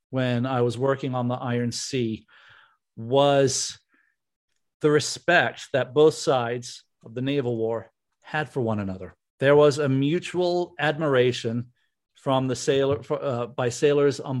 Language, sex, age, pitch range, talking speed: English, male, 50-69, 125-150 Hz, 140 wpm